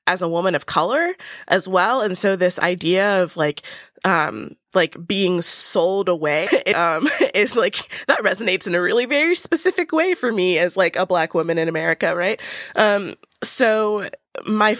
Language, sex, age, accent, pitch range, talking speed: English, female, 20-39, American, 170-200 Hz, 170 wpm